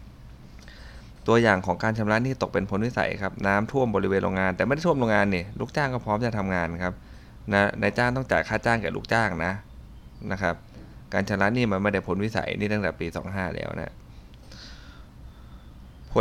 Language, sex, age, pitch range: Thai, male, 20-39, 95-120 Hz